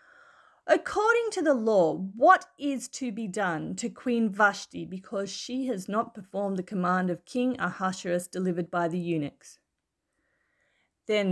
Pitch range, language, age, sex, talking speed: 185-260 Hz, English, 30-49, female, 145 wpm